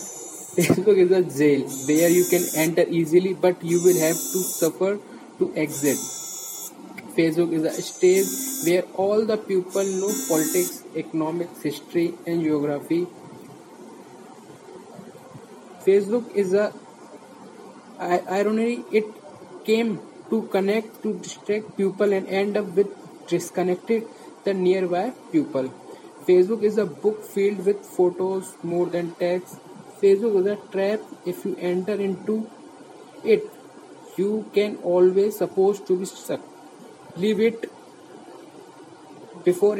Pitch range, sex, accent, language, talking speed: 180-210 Hz, male, Indian, English, 120 wpm